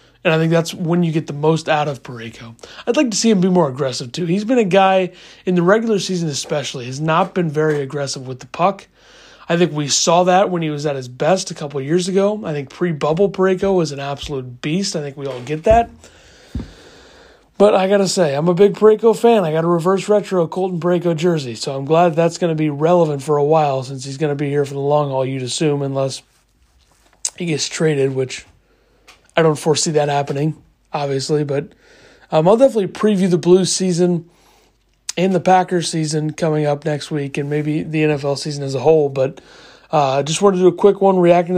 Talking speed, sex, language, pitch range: 220 wpm, male, English, 150-185 Hz